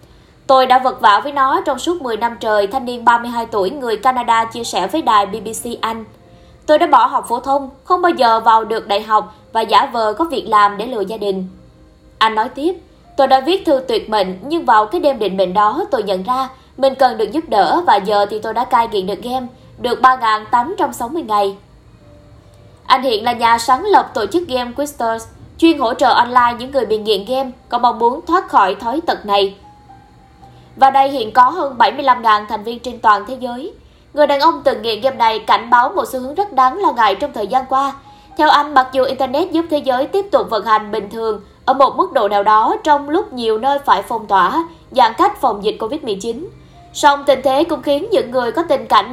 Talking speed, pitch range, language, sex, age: 225 wpm, 220-280 Hz, Vietnamese, female, 20-39